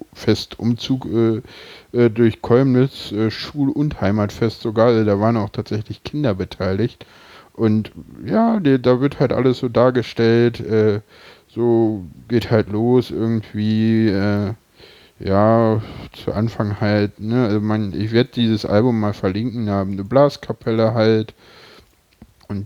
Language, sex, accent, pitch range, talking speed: German, male, German, 100-115 Hz, 140 wpm